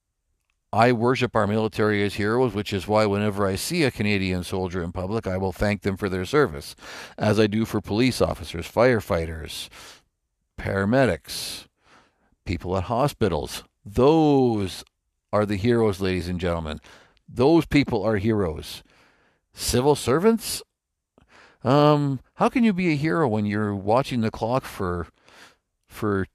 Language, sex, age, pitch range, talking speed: English, male, 50-69, 95-120 Hz, 140 wpm